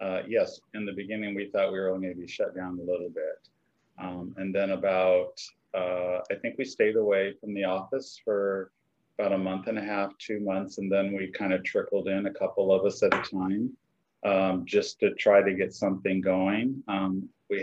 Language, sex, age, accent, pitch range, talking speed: English, male, 40-59, American, 95-105 Hz, 220 wpm